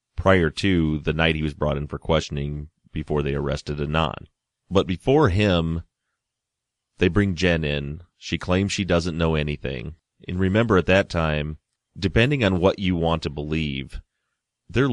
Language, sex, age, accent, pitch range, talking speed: English, male, 30-49, American, 75-95 Hz, 160 wpm